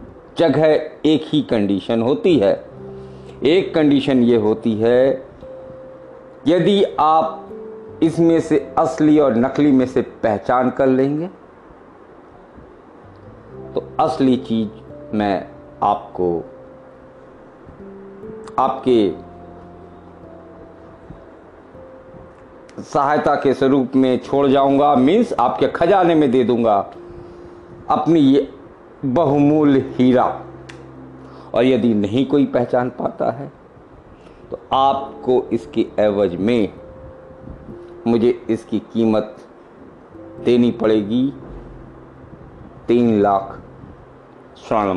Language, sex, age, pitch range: Hindi, male, 50-69, 95-150 Hz